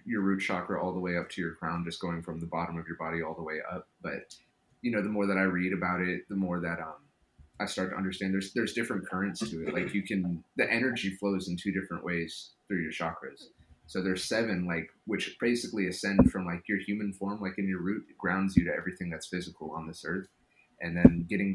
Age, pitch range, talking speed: 30-49, 85-95 Hz, 240 wpm